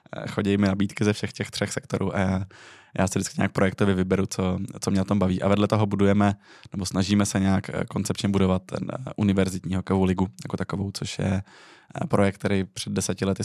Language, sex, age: Czech, male, 20-39